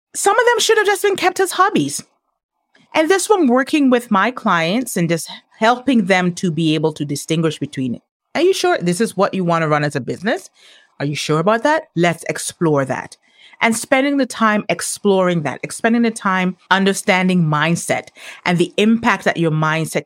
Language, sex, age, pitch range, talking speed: English, female, 30-49, 165-255 Hz, 195 wpm